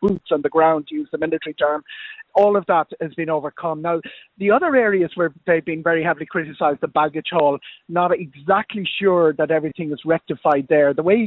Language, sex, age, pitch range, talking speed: English, male, 30-49, 150-180 Hz, 200 wpm